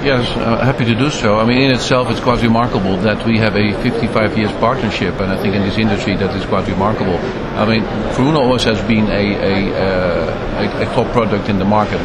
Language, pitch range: English, 105-120 Hz